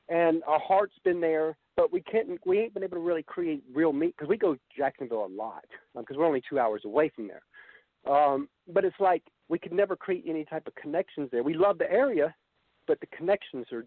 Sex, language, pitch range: male, English, 150-210 Hz